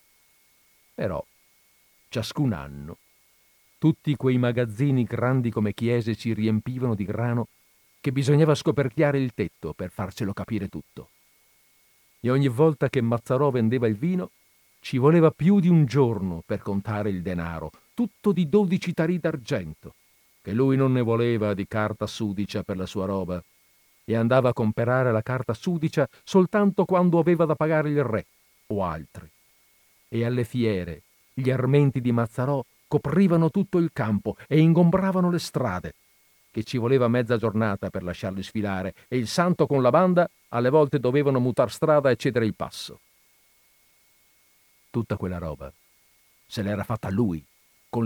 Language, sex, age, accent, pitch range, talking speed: Italian, male, 50-69, native, 105-145 Hz, 150 wpm